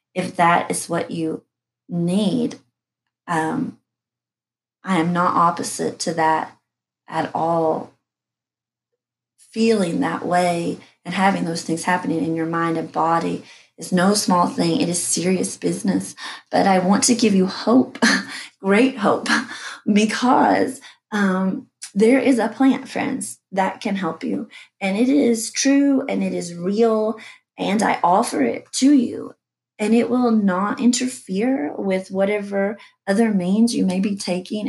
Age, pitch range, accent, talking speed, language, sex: 30-49, 180-230 Hz, American, 145 wpm, English, female